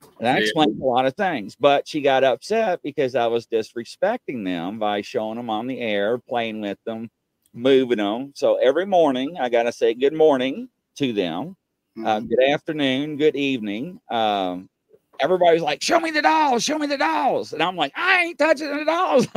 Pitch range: 120-185 Hz